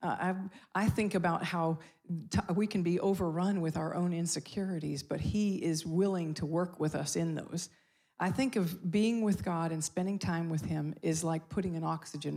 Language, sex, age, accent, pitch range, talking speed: English, female, 40-59, American, 165-200 Hz, 200 wpm